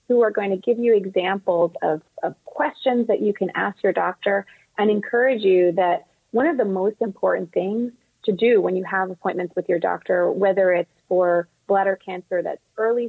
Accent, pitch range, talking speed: American, 185-240 Hz, 195 wpm